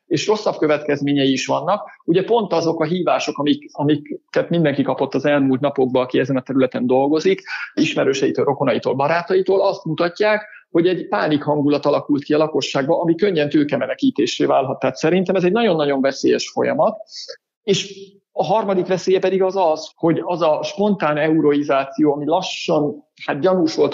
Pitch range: 145-175 Hz